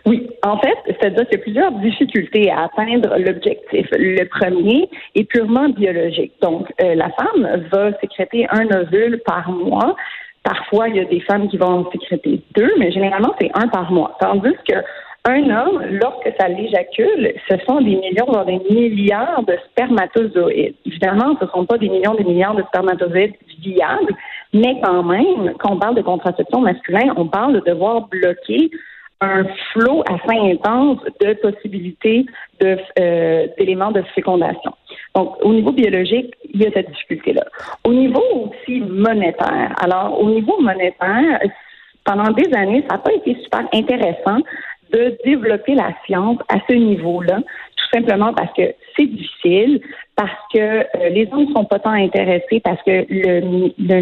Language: French